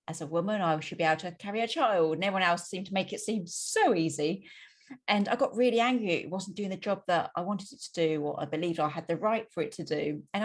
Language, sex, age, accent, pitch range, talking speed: English, female, 40-59, British, 160-210 Hz, 280 wpm